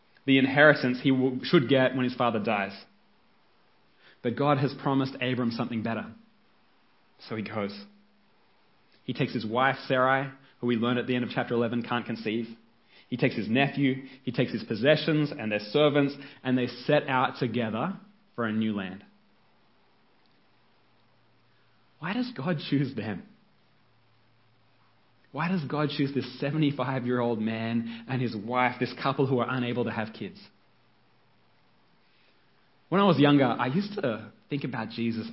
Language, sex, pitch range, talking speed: English, male, 115-140 Hz, 150 wpm